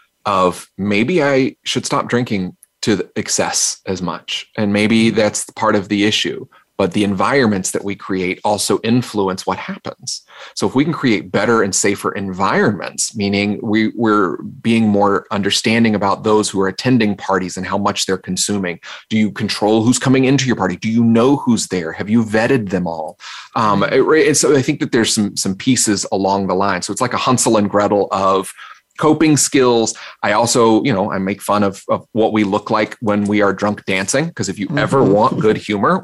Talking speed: 195 wpm